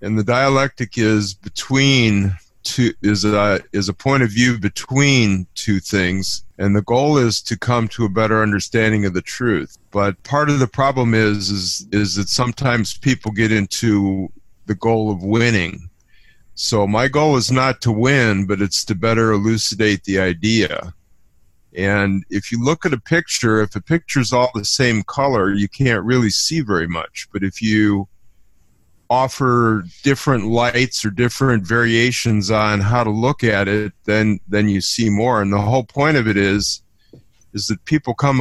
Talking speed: 170 wpm